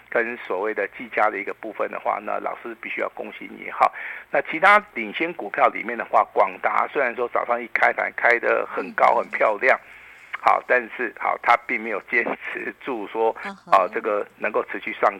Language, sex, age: Chinese, male, 50-69